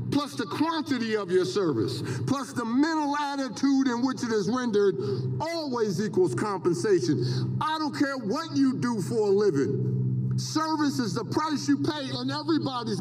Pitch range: 205-295 Hz